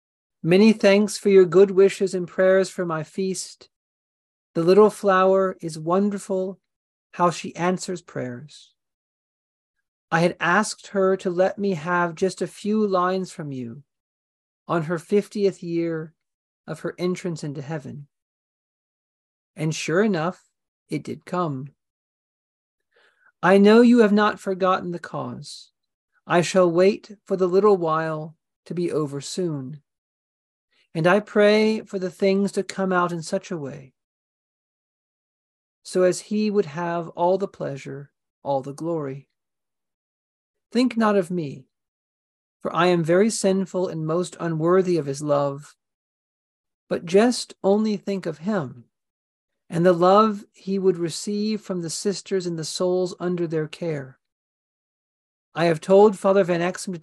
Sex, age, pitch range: male, 40-59, 150-195 Hz